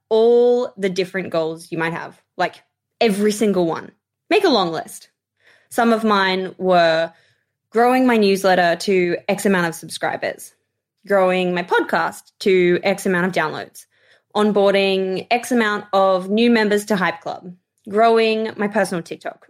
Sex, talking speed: female, 150 wpm